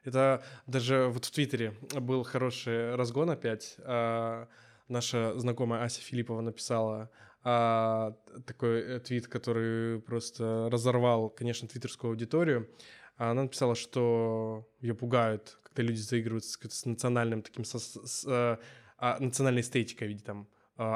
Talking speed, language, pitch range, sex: 135 wpm, Russian, 115-130 Hz, male